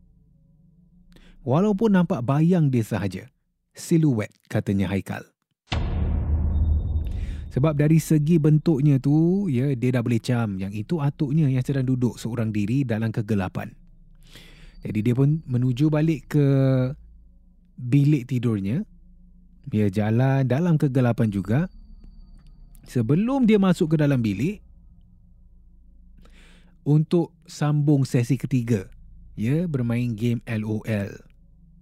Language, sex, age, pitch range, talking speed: Malay, male, 30-49, 105-165 Hz, 105 wpm